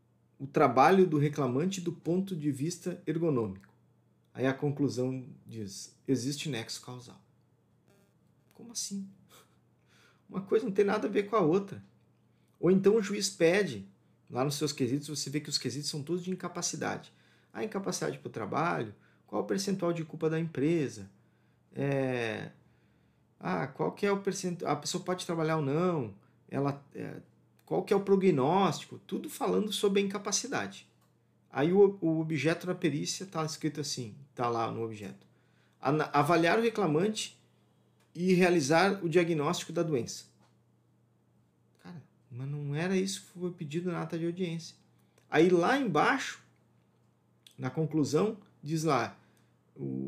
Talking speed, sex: 150 wpm, male